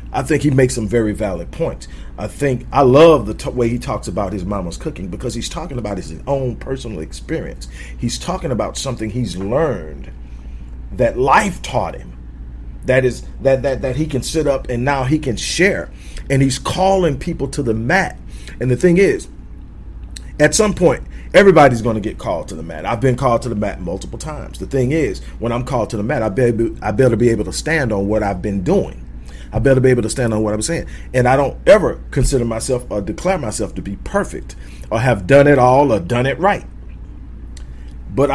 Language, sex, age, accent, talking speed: English, male, 40-59, American, 215 wpm